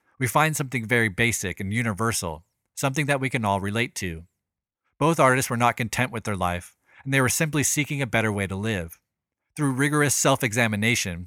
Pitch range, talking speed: 100-135 Hz, 185 wpm